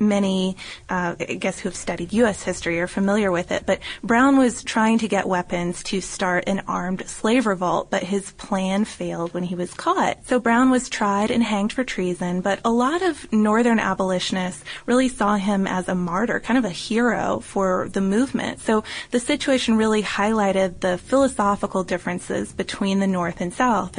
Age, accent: 20-39, American